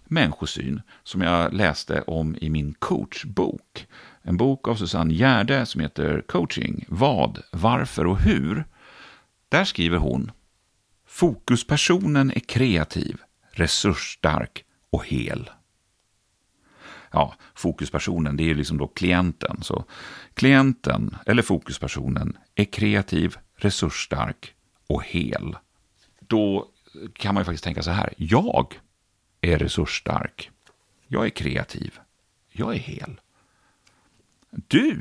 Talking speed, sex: 110 wpm, male